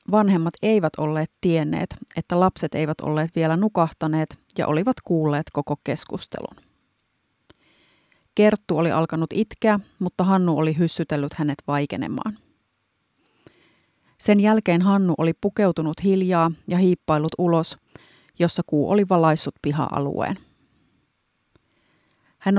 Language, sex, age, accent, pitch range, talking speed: Finnish, female, 30-49, native, 155-195 Hz, 105 wpm